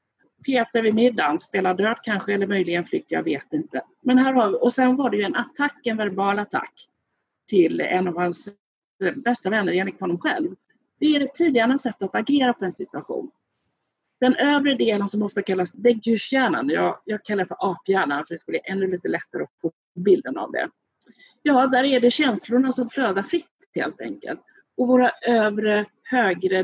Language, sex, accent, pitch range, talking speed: Swedish, female, native, 190-285 Hz, 190 wpm